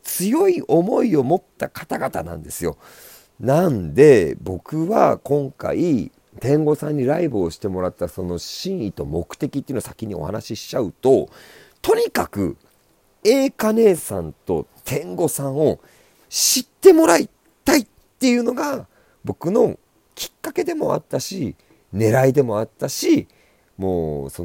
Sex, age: male, 40-59